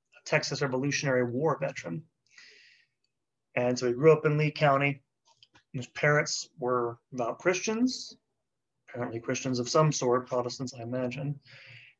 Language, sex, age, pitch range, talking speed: English, male, 30-49, 125-155 Hz, 125 wpm